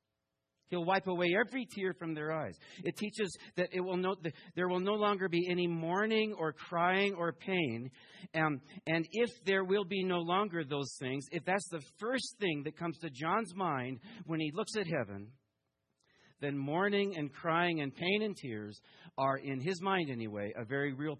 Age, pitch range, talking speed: 40-59, 115-180 Hz, 185 wpm